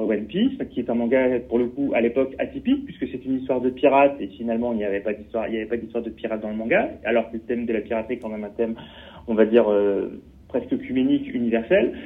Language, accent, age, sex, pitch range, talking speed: French, French, 30-49, male, 115-140 Hz, 250 wpm